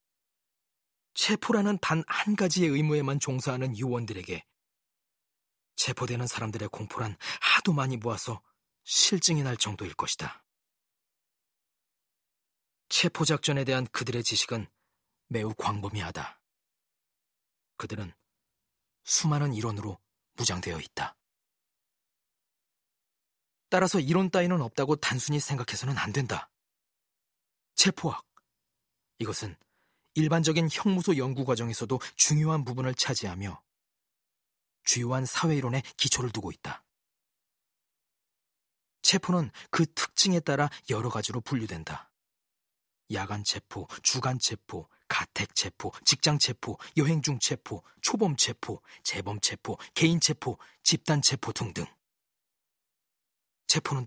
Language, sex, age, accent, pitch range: Korean, male, 40-59, native, 110-150 Hz